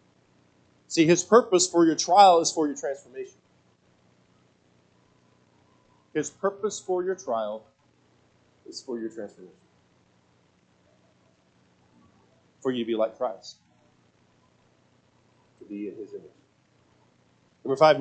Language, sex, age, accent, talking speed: English, male, 30-49, American, 105 wpm